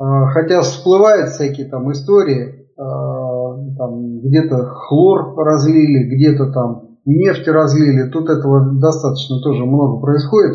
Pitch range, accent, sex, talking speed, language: 135-160 Hz, native, male, 100 wpm, Russian